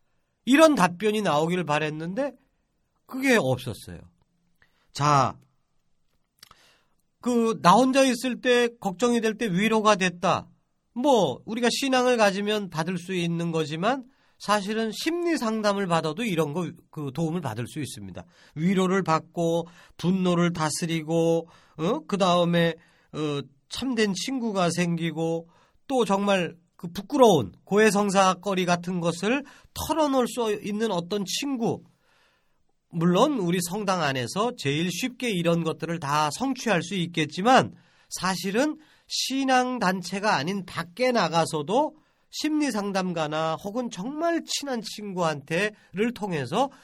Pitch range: 165-235 Hz